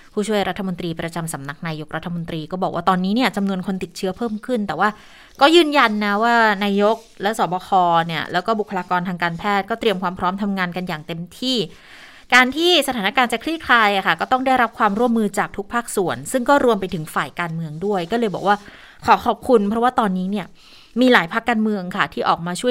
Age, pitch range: 20-39, 180-230 Hz